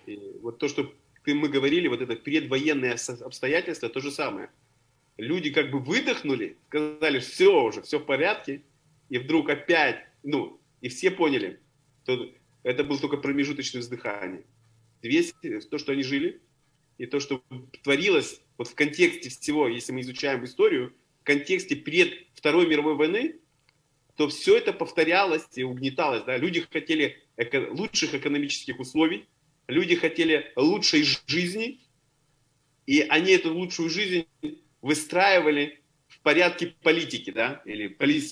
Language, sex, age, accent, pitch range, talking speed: Ukrainian, male, 30-49, native, 140-165 Hz, 135 wpm